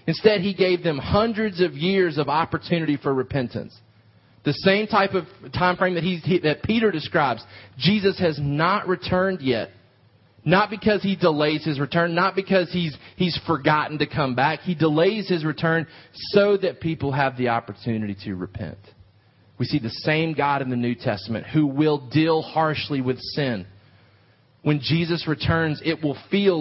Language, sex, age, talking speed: English, male, 30-49, 165 wpm